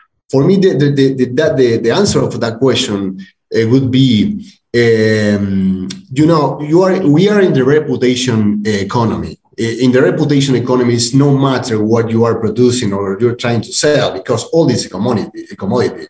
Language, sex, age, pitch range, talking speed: English, male, 30-49, 115-145 Hz, 175 wpm